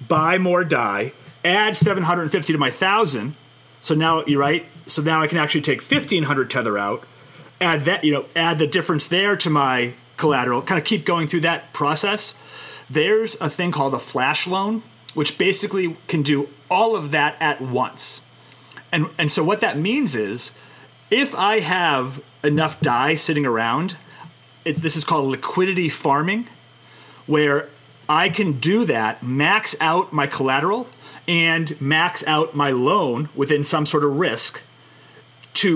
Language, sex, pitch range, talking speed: English, male, 140-170 Hz, 165 wpm